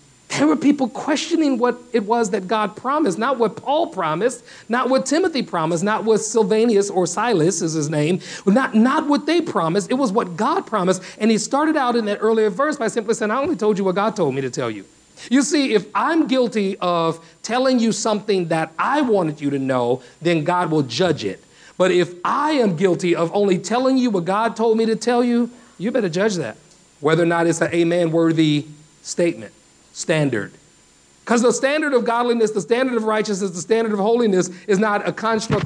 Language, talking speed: English, 205 wpm